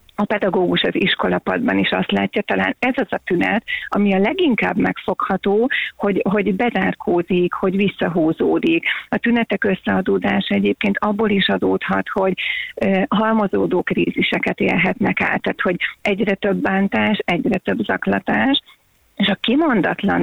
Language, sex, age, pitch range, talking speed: Hungarian, female, 40-59, 185-220 Hz, 135 wpm